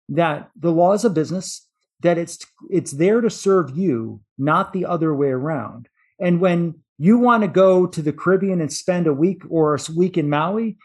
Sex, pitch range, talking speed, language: male, 145-195 Hz, 200 wpm, English